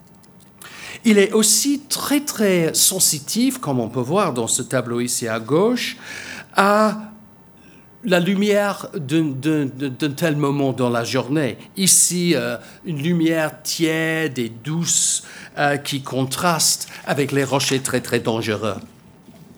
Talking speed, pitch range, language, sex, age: 130 wpm, 140-205 Hz, French, male, 60-79